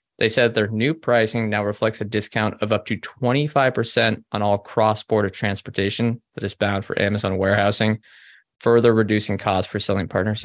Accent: American